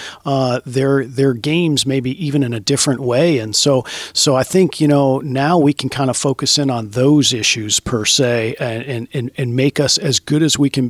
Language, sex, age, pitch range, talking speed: English, male, 50-69, 125-145 Hz, 220 wpm